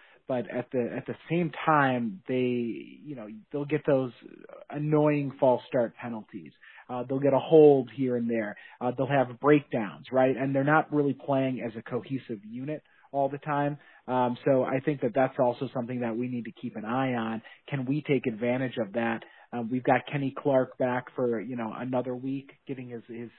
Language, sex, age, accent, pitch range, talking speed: English, male, 30-49, American, 120-140 Hz, 200 wpm